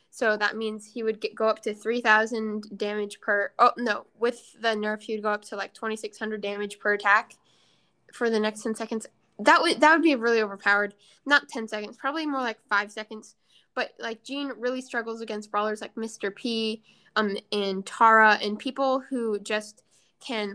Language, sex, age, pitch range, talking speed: English, female, 10-29, 215-245 Hz, 190 wpm